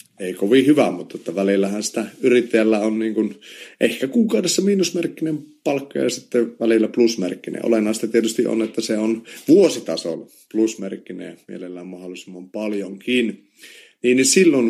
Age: 30-49